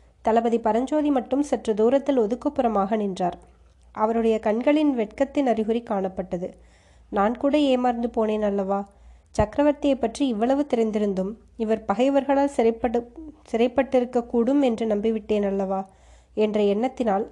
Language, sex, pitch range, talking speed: Tamil, female, 210-255 Hz, 105 wpm